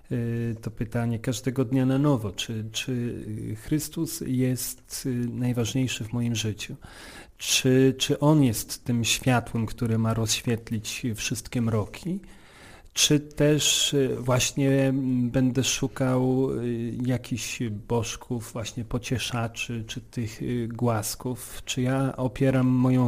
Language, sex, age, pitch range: Polish, male, 40-59, 110-130 Hz